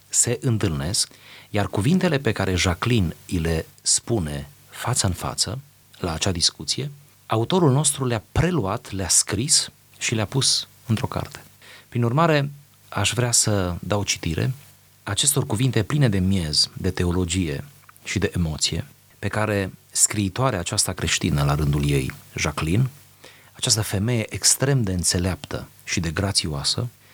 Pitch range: 90-125 Hz